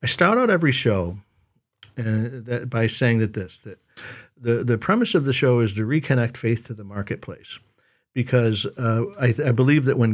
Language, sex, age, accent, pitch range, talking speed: English, male, 50-69, American, 110-135 Hz, 180 wpm